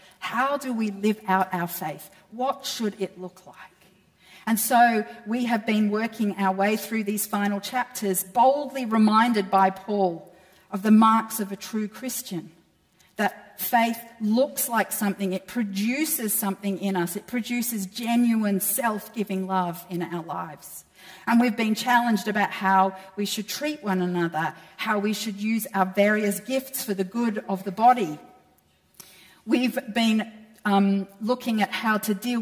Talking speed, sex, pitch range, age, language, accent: 155 wpm, female, 185-220 Hz, 50-69, English, Australian